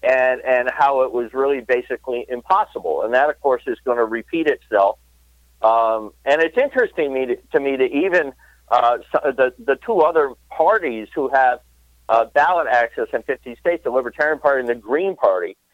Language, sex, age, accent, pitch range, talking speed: English, male, 50-69, American, 120-155 Hz, 190 wpm